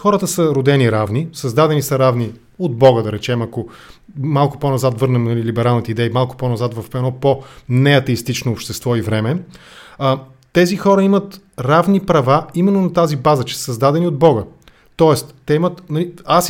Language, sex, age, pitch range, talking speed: English, male, 30-49, 130-175 Hz, 155 wpm